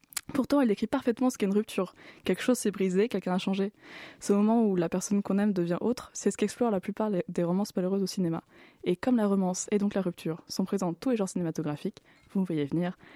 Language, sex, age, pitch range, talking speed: French, female, 20-39, 185-215 Hz, 245 wpm